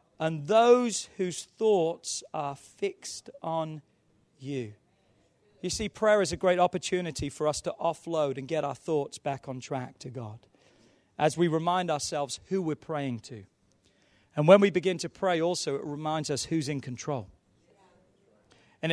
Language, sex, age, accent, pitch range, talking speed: English, male, 40-59, British, 150-200 Hz, 160 wpm